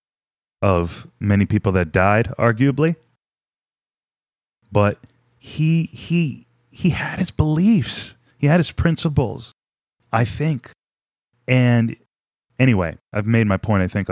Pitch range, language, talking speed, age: 95-120 Hz, English, 115 wpm, 30-49